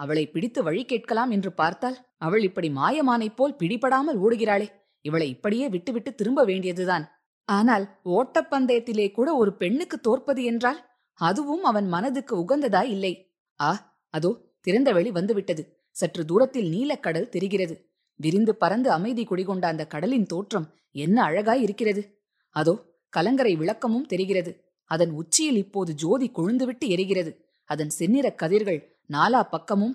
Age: 20-39